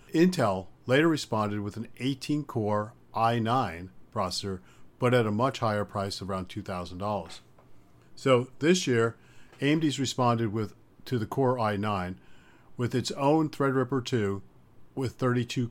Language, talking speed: English, 130 wpm